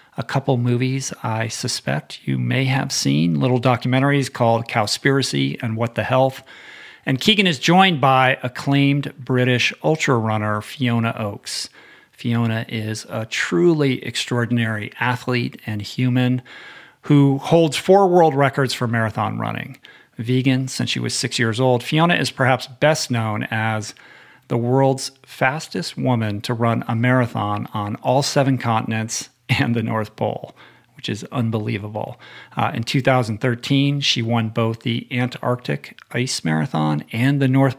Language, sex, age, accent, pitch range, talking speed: English, male, 50-69, American, 115-140 Hz, 140 wpm